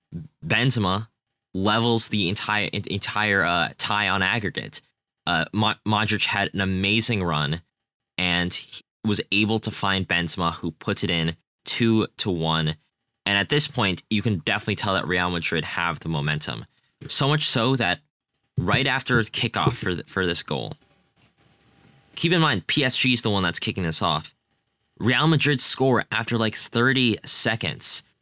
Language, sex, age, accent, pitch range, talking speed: English, male, 10-29, American, 95-120 Hz, 155 wpm